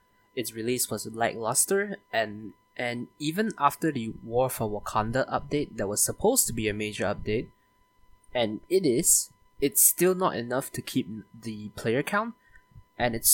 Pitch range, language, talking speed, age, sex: 105-140 Hz, English, 155 wpm, 20-39, male